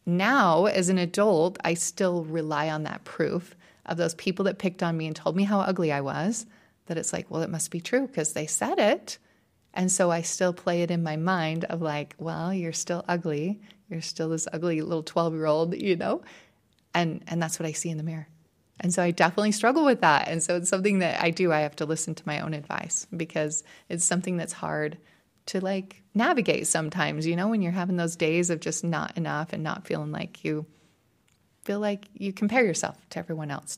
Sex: female